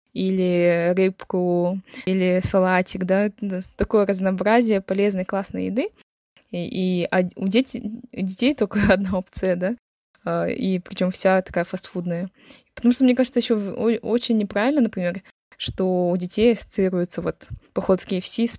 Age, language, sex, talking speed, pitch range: 20-39, Russian, female, 140 wpm, 180-205 Hz